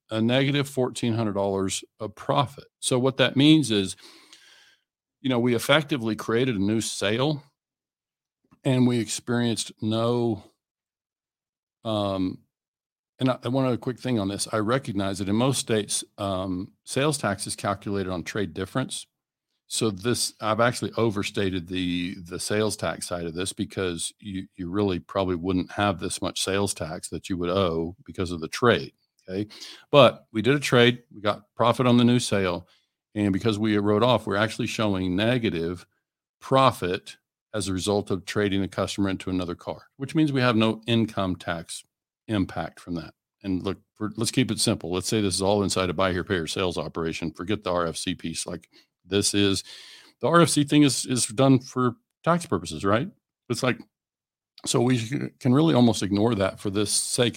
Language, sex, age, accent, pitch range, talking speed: English, male, 50-69, American, 95-120 Hz, 175 wpm